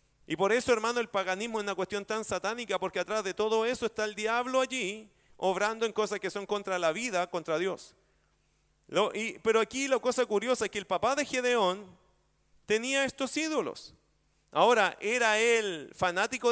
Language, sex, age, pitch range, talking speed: Spanish, male, 40-59, 170-225 Hz, 175 wpm